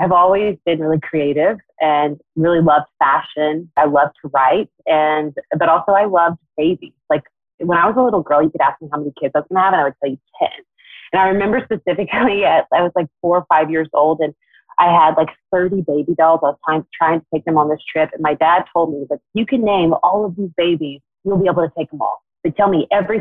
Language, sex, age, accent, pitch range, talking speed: English, female, 30-49, American, 150-185 Hz, 255 wpm